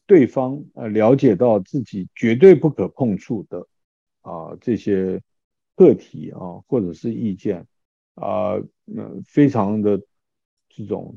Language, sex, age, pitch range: Chinese, male, 50-69, 110-145 Hz